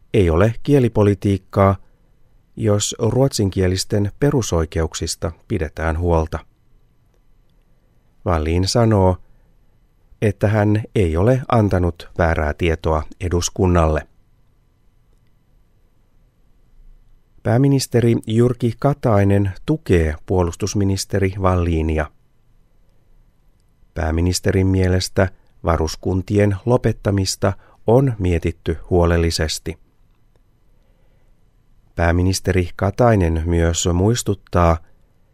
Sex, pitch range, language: male, 85-110 Hz, Finnish